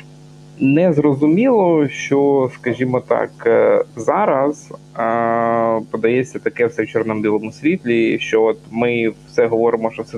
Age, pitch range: 20-39, 110-150 Hz